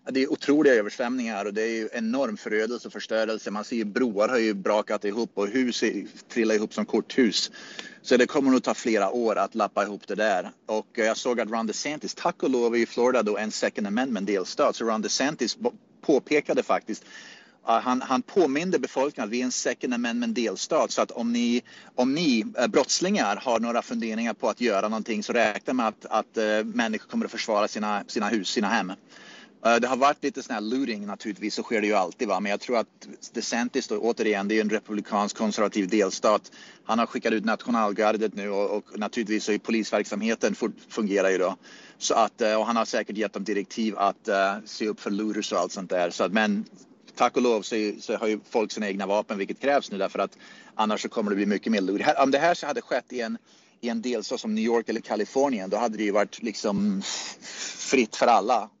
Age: 30-49